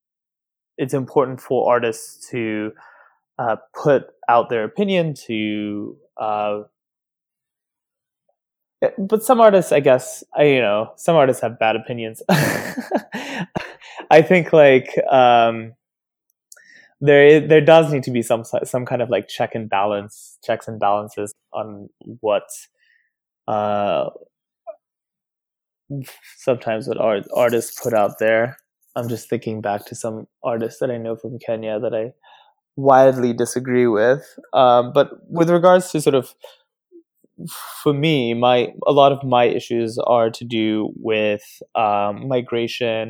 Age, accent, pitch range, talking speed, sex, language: 20-39, American, 115-135 Hz, 130 wpm, male, English